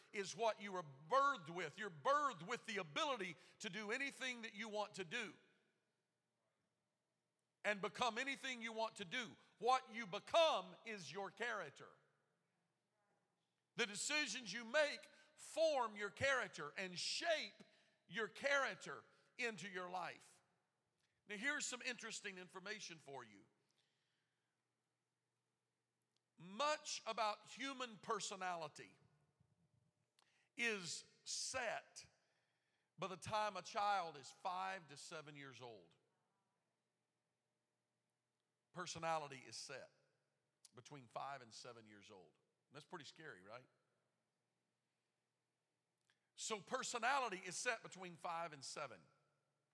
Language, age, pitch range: English, 50-69, 165-235 Hz